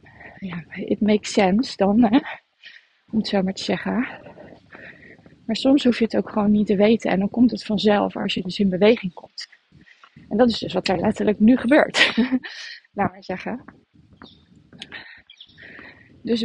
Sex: female